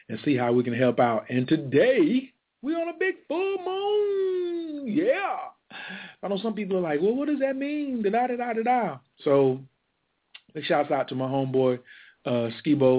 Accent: American